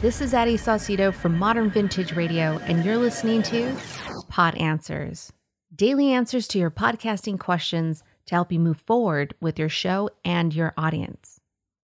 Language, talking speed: English, 155 wpm